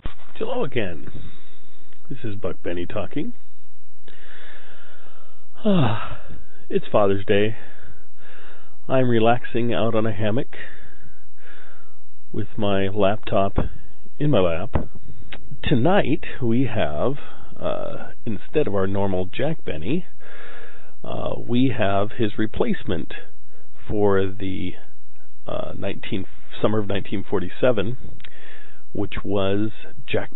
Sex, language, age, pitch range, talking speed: male, English, 40-59, 95-115 Hz, 100 wpm